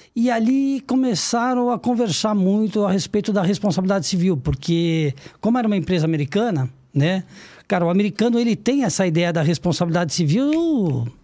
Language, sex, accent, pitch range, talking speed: Portuguese, male, Brazilian, 175-235 Hz, 150 wpm